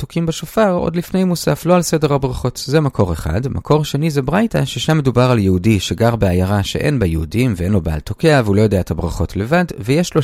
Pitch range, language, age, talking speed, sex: 100-165 Hz, Hebrew, 30-49, 210 wpm, male